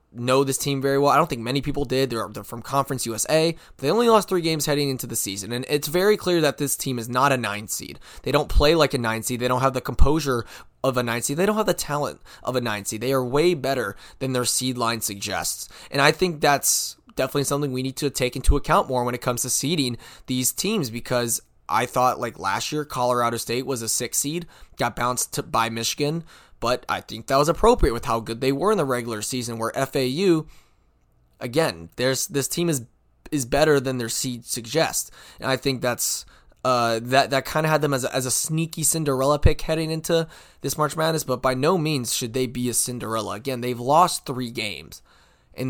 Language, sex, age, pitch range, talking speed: English, male, 20-39, 115-145 Hz, 225 wpm